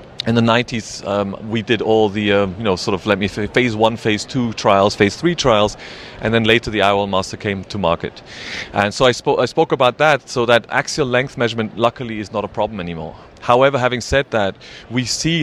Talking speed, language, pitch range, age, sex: 225 wpm, English, 110-130 Hz, 30-49, male